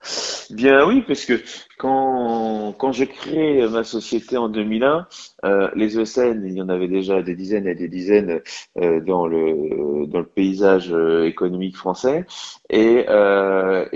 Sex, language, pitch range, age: male, French, 100-125 Hz, 30-49